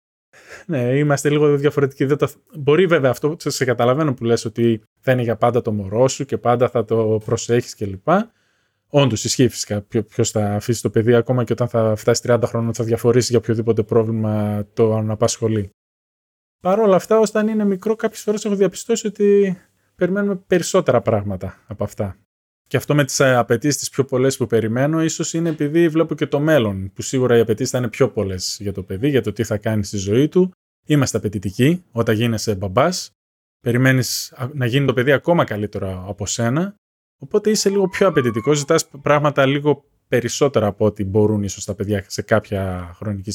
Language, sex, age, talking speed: Greek, male, 20-39, 185 wpm